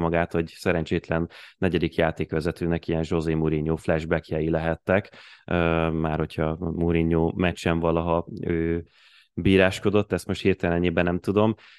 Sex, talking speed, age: male, 115 wpm, 30-49